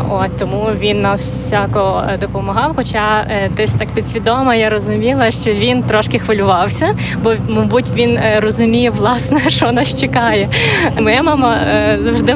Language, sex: Ukrainian, female